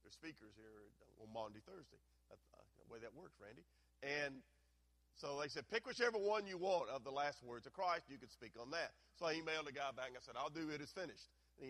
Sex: male